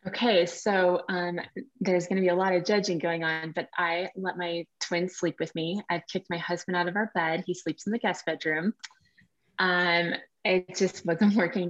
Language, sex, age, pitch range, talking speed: English, female, 20-39, 165-190 Hz, 205 wpm